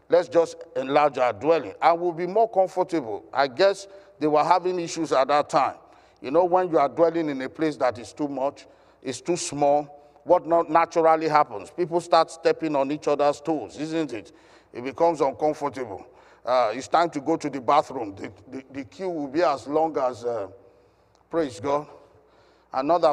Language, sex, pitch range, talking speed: English, male, 140-175 Hz, 185 wpm